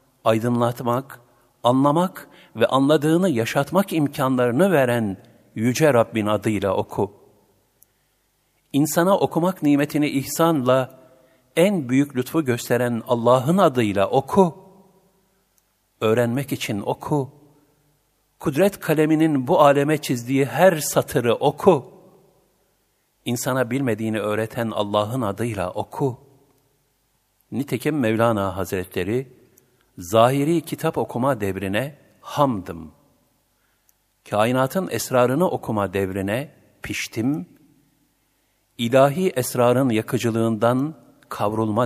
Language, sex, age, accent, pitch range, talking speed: Turkish, male, 60-79, native, 110-145 Hz, 80 wpm